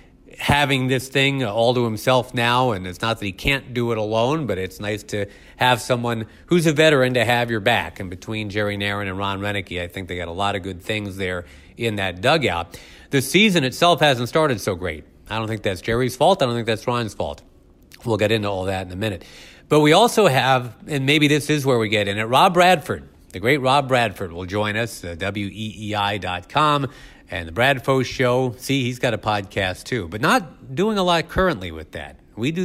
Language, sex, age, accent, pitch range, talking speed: English, male, 40-59, American, 100-135 Hz, 220 wpm